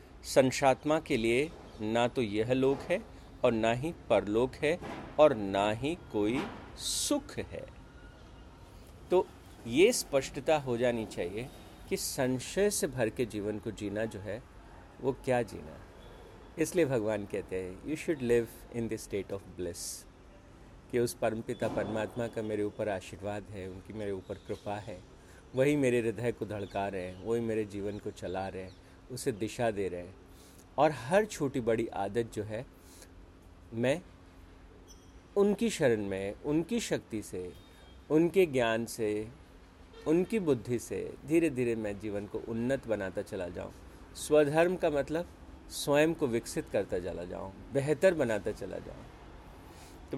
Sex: male